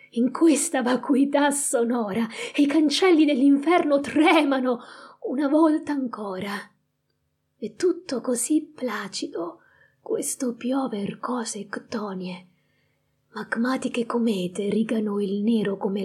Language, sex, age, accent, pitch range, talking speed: Italian, female, 20-39, native, 195-255 Hz, 95 wpm